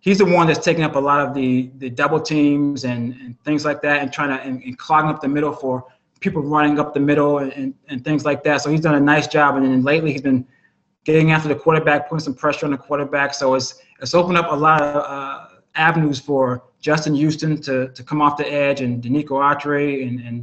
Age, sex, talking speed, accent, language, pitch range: 20-39, male, 245 wpm, American, English, 130-155 Hz